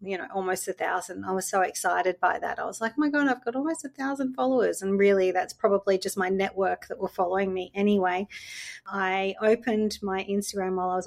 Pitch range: 185-225 Hz